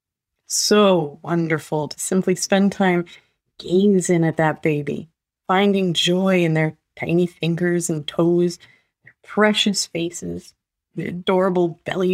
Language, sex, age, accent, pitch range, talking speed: English, female, 30-49, American, 155-185 Hz, 120 wpm